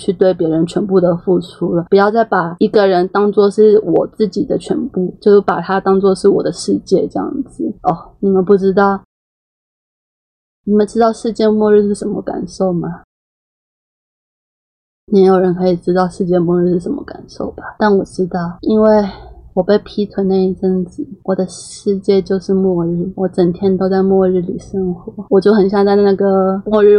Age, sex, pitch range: 20-39, female, 185-205 Hz